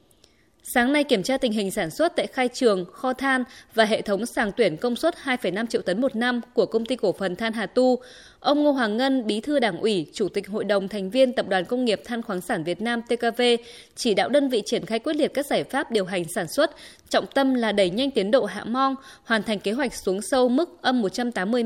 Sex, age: female, 20-39